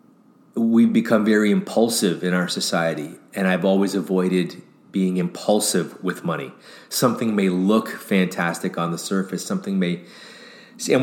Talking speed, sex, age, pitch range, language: 135 wpm, male, 30-49, 95-110 Hz, English